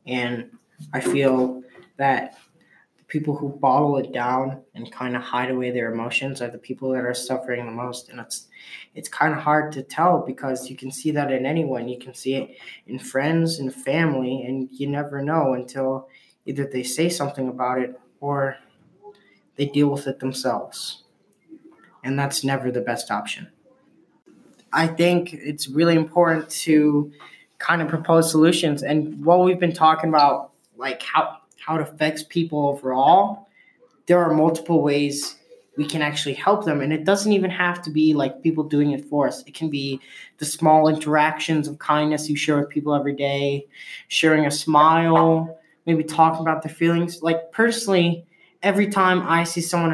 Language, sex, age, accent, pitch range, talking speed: English, male, 20-39, American, 135-165 Hz, 175 wpm